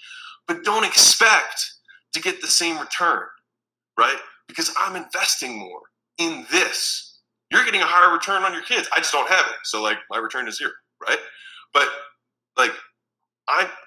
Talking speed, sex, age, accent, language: 165 wpm, male, 20-39, American, English